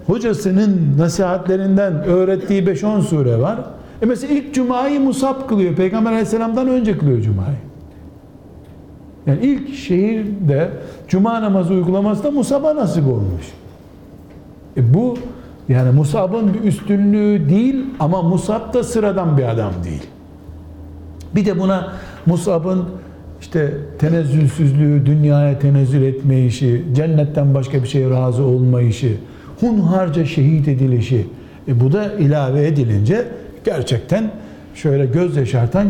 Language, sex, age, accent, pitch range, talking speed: Turkish, male, 60-79, native, 130-200 Hz, 115 wpm